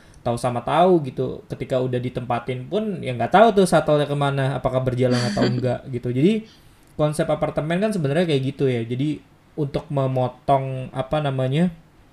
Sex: male